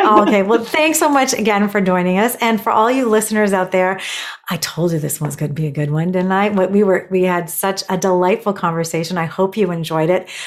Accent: American